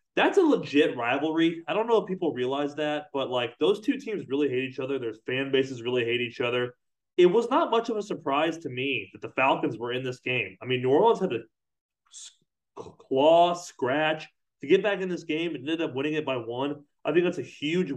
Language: English